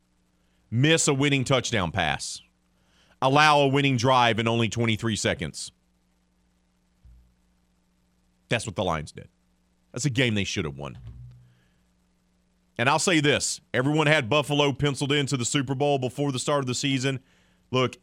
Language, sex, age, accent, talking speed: English, male, 40-59, American, 145 wpm